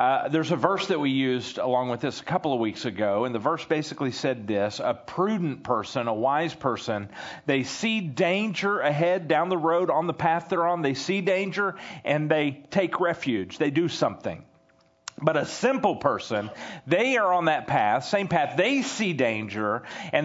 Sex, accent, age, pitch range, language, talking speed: male, American, 40-59, 150-200 Hz, English, 190 wpm